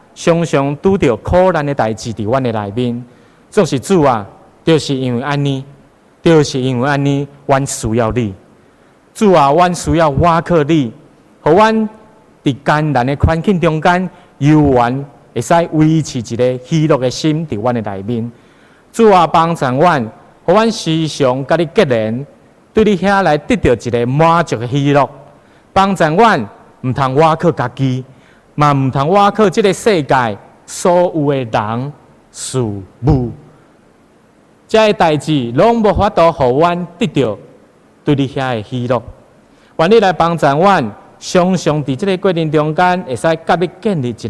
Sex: male